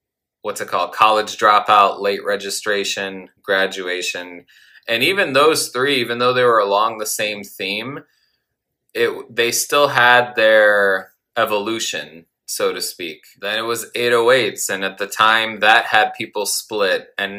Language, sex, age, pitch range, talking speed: English, male, 20-39, 95-120 Hz, 145 wpm